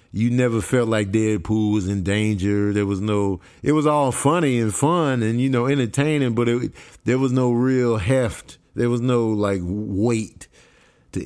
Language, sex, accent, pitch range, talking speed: English, male, American, 110-145 Hz, 175 wpm